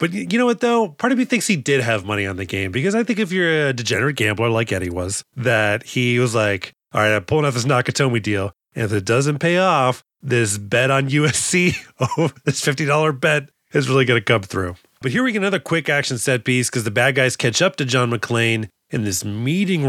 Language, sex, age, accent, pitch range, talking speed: English, male, 30-49, American, 115-150 Hz, 240 wpm